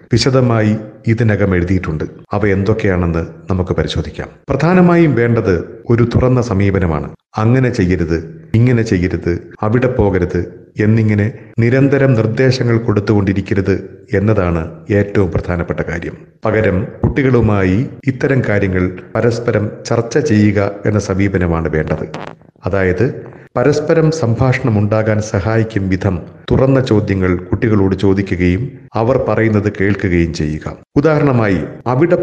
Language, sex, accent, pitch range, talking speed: Malayalam, male, native, 95-120 Hz, 95 wpm